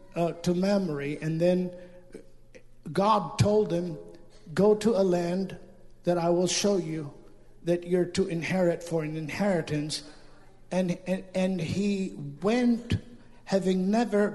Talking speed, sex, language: 135 wpm, male, English